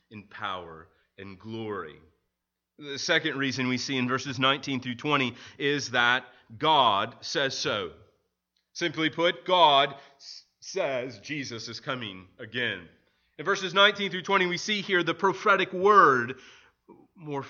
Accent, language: American, English